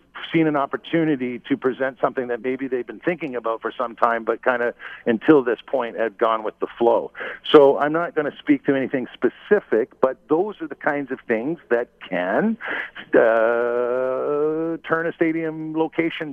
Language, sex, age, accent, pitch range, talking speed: English, male, 50-69, American, 120-150 Hz, 180 wpm